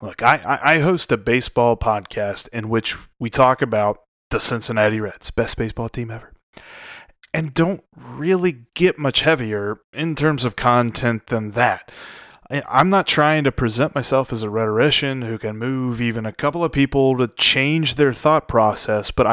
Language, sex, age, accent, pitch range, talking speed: English, male, 30-49, American, 115-145 Hz, 170 wpm